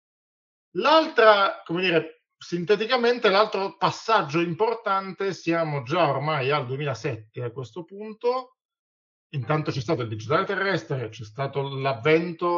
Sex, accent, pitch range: male, native, 125-170 Hz